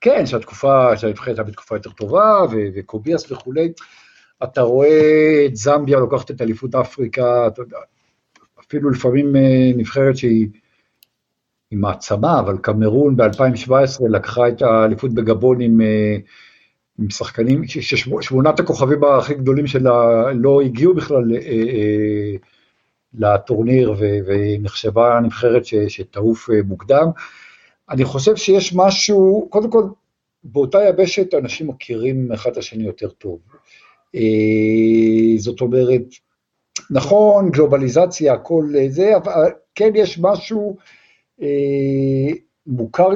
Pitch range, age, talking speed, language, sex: 115-165 Hz, 50-69, 100 wpm, Hebrew, male